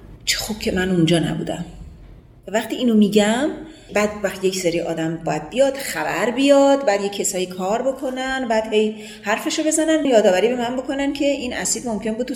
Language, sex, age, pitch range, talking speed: Persian, female, 30-49, 170-220 Hz, 170 wpm